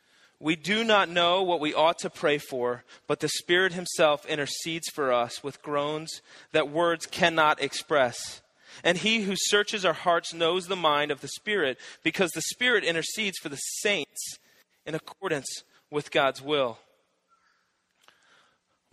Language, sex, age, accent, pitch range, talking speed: English, male, 30-49, American, 155-200 Hz, 150 wpm